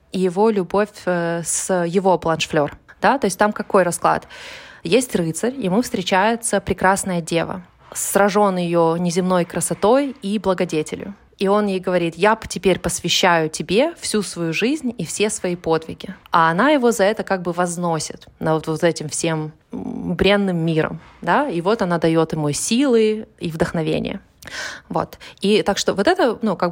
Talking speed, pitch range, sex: 155 wpm, 175-215 Hz, female